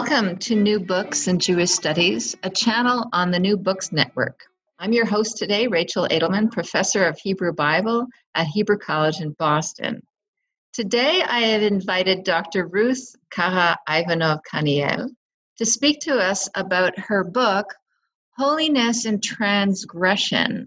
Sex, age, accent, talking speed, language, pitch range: female, 50-69, American, 135 wpm, English, 170-235 Hz